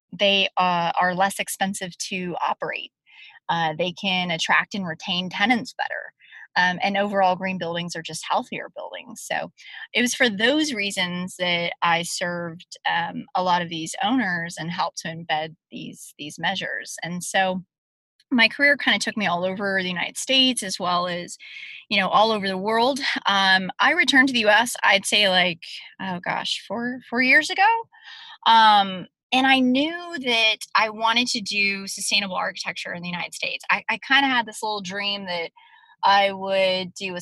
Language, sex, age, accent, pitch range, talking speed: English, female, 20-39, American, 180-240 Hz, 175 wpm